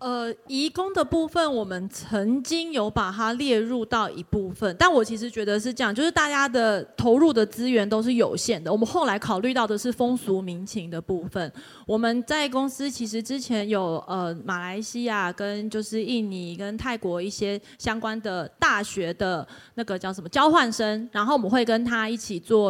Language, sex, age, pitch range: Chinese, female, 30-49, 195-245 Hz